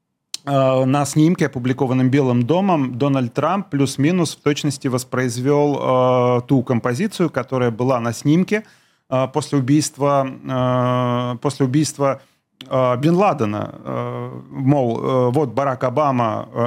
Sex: male